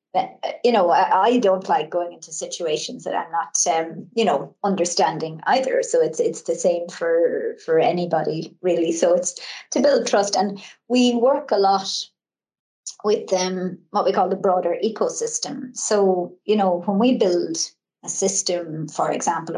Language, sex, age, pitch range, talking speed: Polish, male, 30-49, 170-210 Hz, 165 wpm